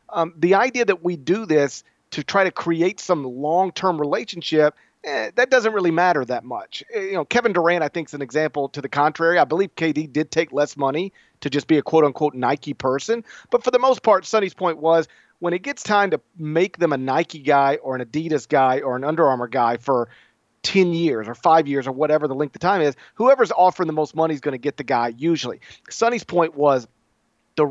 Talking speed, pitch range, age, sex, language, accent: 225 wpm, 150-210 Hz, 40-59, male, English, American